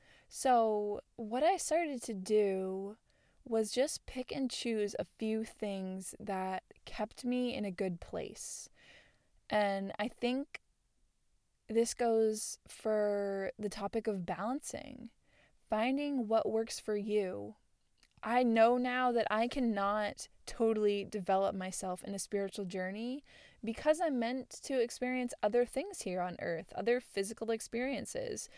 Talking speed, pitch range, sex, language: 130 wpm, 195-240 Hz, female, English